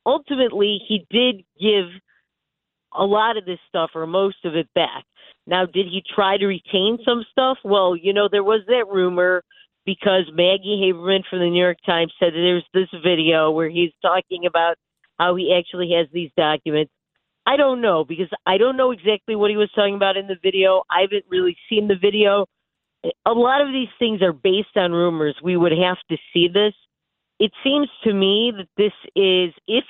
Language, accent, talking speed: English, American, 195 wpm